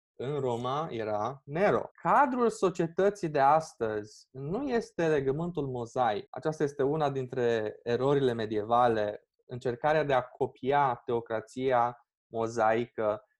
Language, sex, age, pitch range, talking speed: Romanian, male, 20-39, 125-155 Hz, 110 wpm